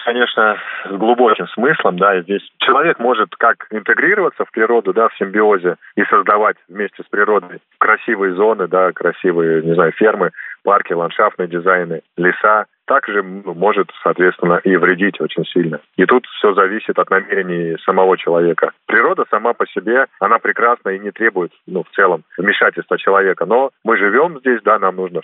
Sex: male